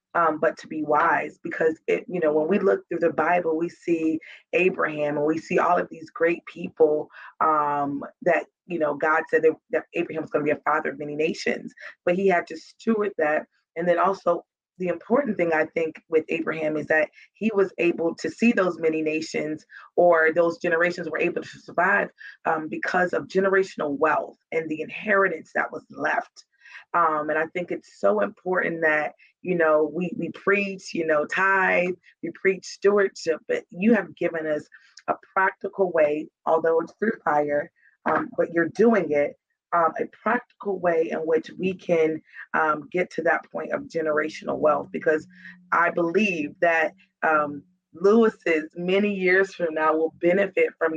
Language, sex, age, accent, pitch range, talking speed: English, female, 30-49, American, 155-190 Hz, 180 wpm